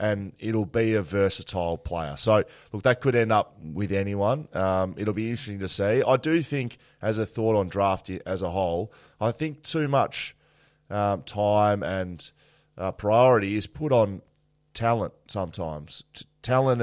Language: English